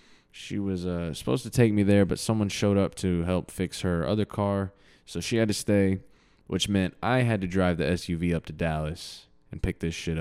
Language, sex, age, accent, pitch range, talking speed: English, male, 20-39, American, 85-110 Hz, 225 wpm